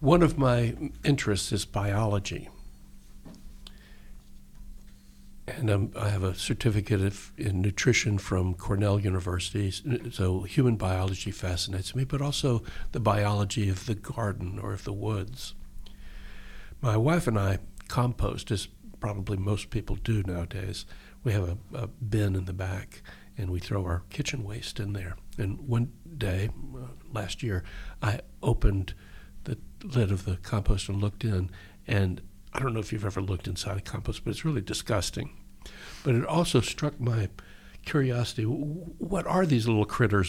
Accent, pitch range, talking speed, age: American, 95-120 Hz, 150 wpm, 60-79